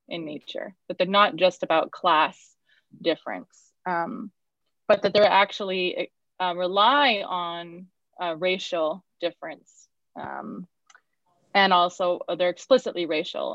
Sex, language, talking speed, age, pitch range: female, English, 115 wpm, 20-39, 175-205 Hz